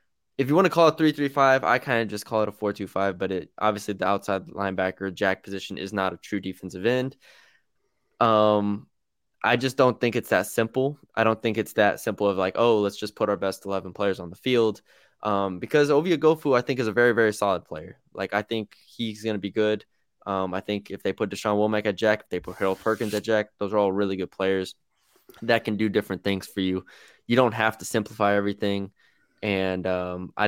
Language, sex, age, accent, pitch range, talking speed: English, male, 20-39, American, 95-110 Hz, 235 wpm